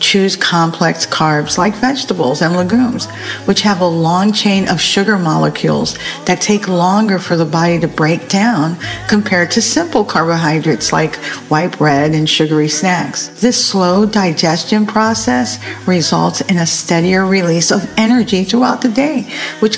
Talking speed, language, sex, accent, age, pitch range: 150 wpm, English, female, American, 50-69, 165-215 Hz